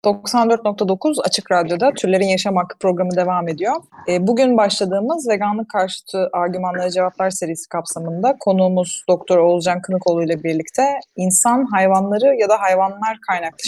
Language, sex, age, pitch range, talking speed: Turkish, female, 30-49, 180-245 Hz, 130 wpm